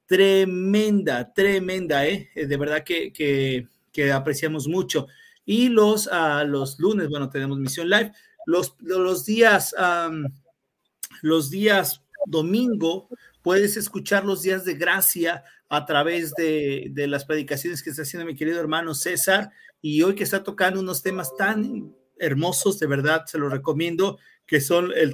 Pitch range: 150-200 Hz